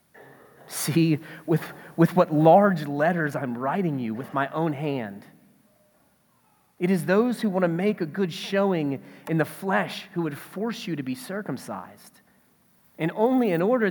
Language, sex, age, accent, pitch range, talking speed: English, male, 30-49, American, 130-190 Hz, 160 wpm